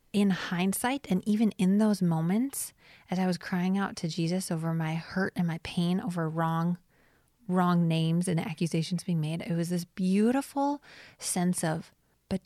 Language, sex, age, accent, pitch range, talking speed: English, female, 30-49, American, 170-200 Hz, 170 wpm